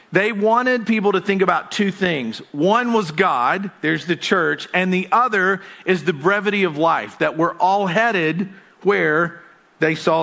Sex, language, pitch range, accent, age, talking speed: male, English, 165-215 Hz, American, 50-69, 170 wpm